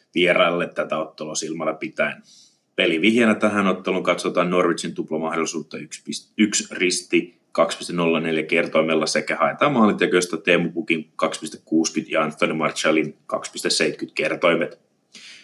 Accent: native